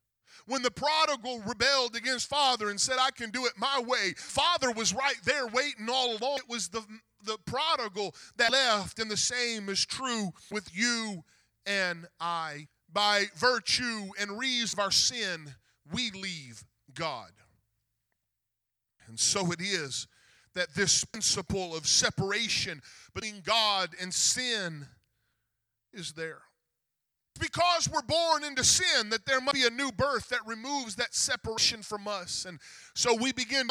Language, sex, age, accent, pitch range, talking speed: English, male, 40-59, American, 160-235 Hz, 150 wpm